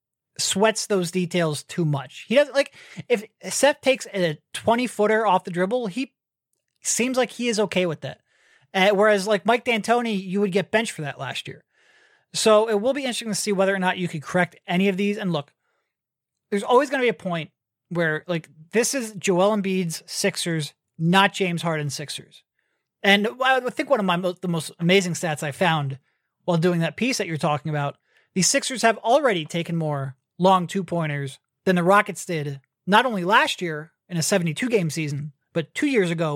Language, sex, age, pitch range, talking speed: English, male, 30-49, 165-215 Hz, 195 wpm